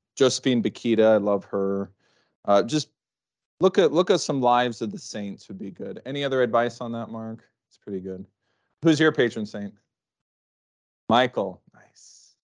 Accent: American